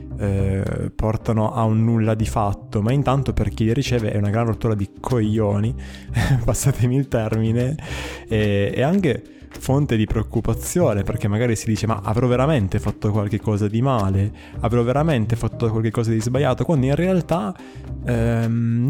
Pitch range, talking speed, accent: 105-125 Hz, 160 wpm, native